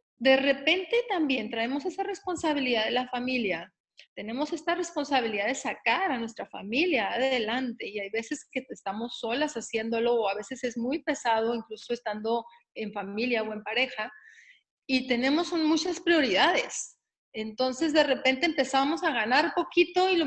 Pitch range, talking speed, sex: 230-310 Hz, 150 wpm, female